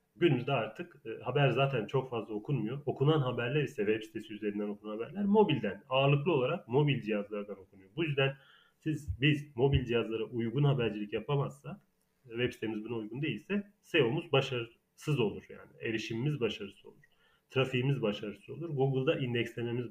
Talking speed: 145 wpm